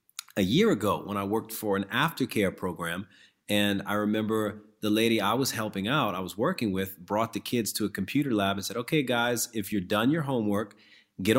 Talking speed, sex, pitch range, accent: 210 wpm, male, 95-115 Hz, American